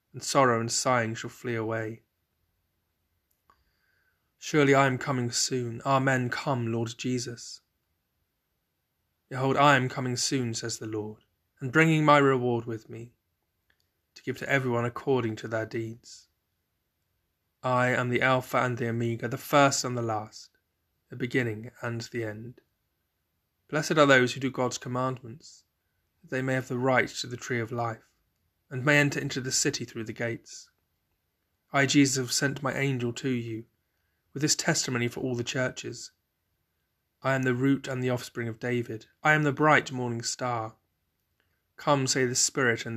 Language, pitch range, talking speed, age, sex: English, 110-130 Hz, 165 wpm, 20-39, male